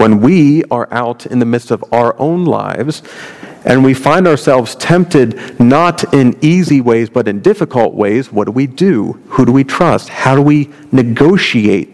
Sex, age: male, 50-69